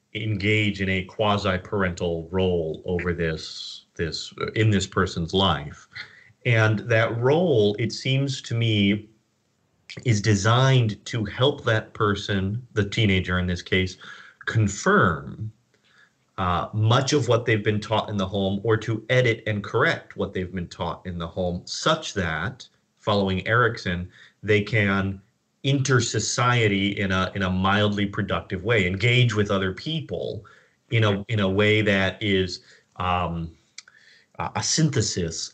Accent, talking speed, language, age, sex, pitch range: American, 140 wpm, English, 30-49, male, 95-115 Hz